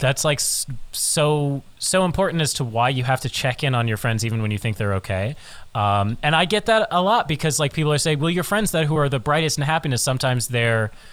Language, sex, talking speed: English, male, 250 wpm